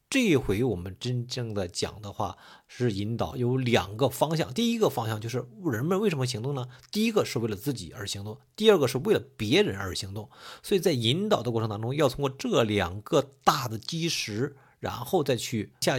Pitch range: 115-160 Hz